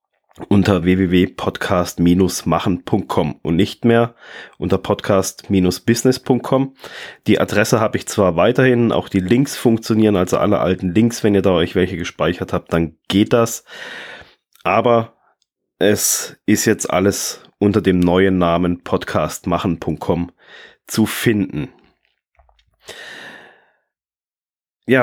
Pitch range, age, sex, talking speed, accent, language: 95-120 Hz, 30-49, male, 105 wpm, German, German